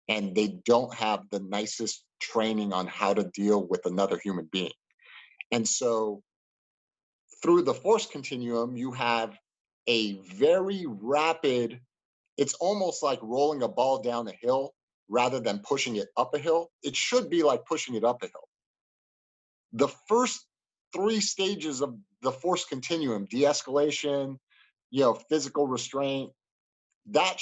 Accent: American